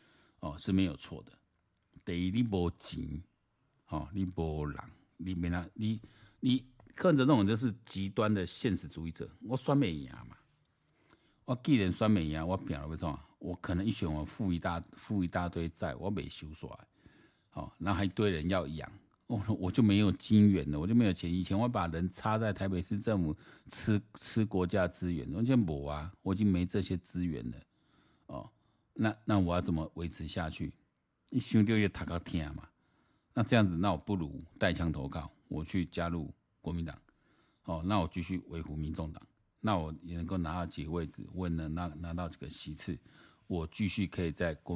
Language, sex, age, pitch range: Chinese, male, 50-69, 85-105 Hz